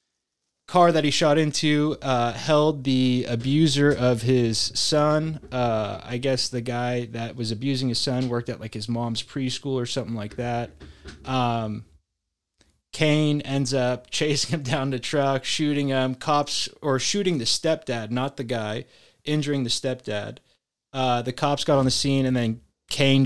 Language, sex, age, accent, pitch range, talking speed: English, male, 20-39, American, 115-140 Hz, 165 wpm